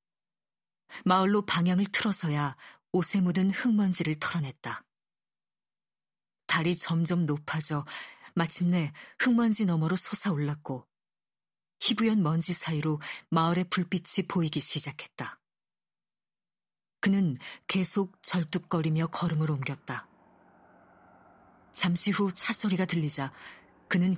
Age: 40-59